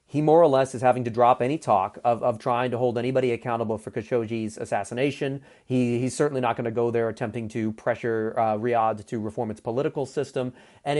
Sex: male